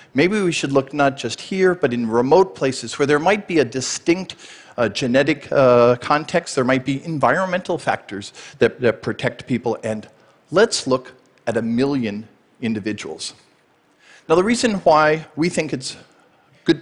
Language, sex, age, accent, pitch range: Chinese, male, 40-59, American, 120-155 Hz